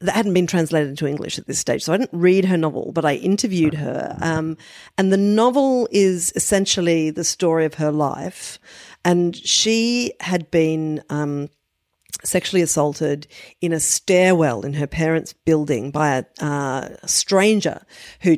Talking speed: 160 wpm